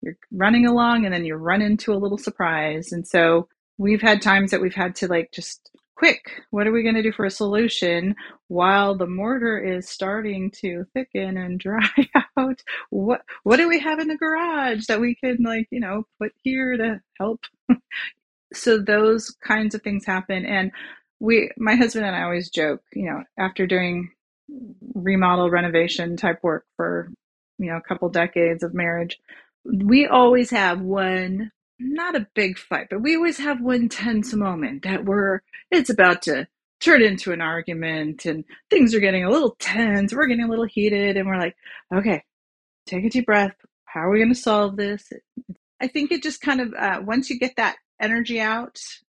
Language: English